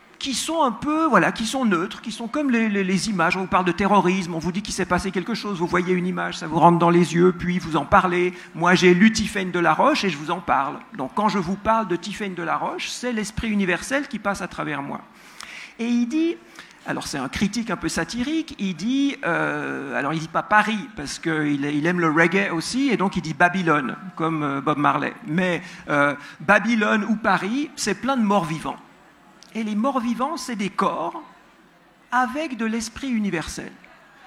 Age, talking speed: 50-69, 220 wpm